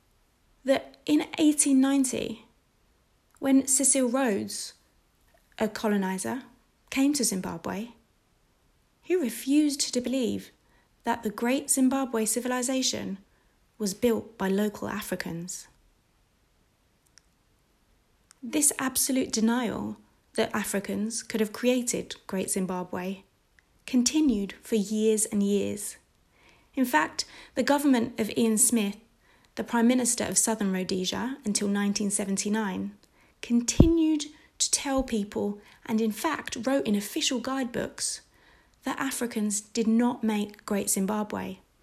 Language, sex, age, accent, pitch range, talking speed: English, female, 20-39, British, 205-260 Hz, 105 wpm